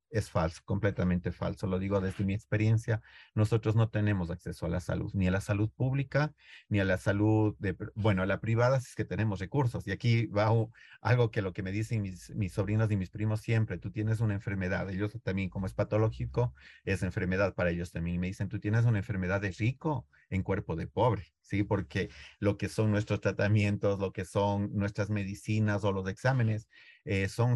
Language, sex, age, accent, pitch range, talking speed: Spanish, male, 40-59, Mexican, 95-110 Hz, 205 wpm